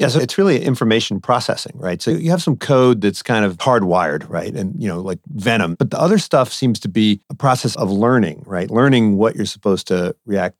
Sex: male